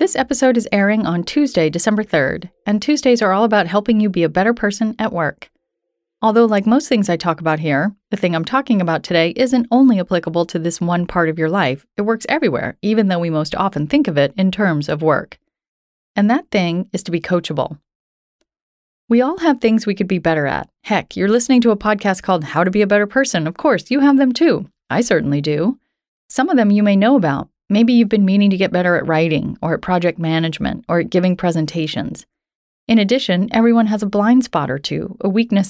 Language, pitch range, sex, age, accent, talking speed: English, 170-225 Hz, female, 30-49, American, 225 wpm